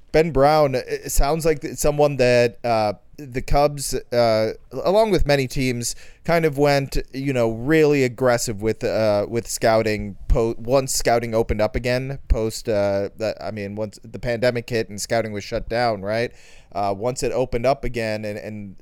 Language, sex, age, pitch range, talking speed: English, male, 20-39, 105-130 Hz, 175 wpm